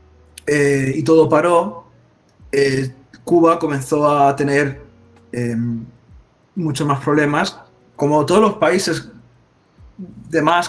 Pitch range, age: 130-160 Hz, 20-39